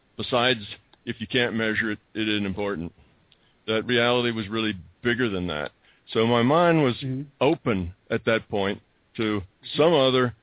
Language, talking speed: English, 155 wpm